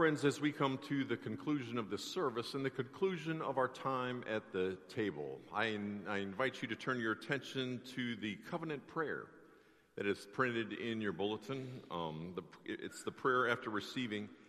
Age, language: 50-69, English